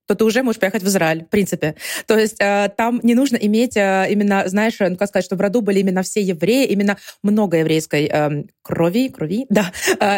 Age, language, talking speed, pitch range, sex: 20-39, Russian, 220 wpm, 185-230 Hz, female